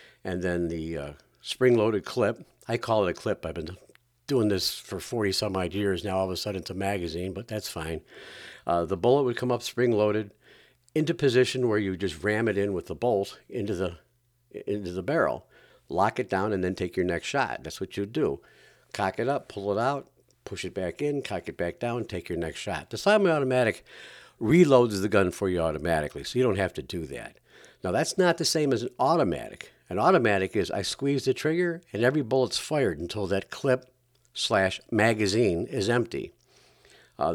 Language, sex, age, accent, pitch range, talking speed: English, male, 60-79, American, 95-130 Hz, 200 wpm